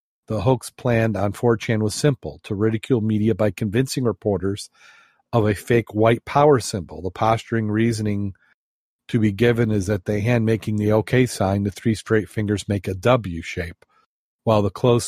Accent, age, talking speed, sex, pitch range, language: American, 40-59, 175 wpm, male, 105-120 Hz, English